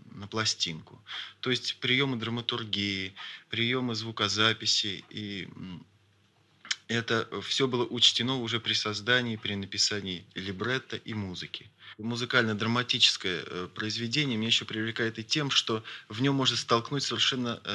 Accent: native